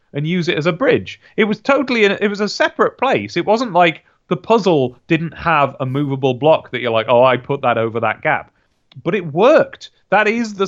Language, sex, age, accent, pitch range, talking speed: English, male, 30-49, British, 135-200 Hz, 225 wpm